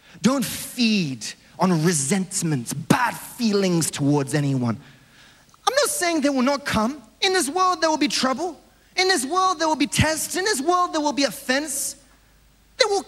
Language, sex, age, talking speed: English, male, 30-49, 175 wpm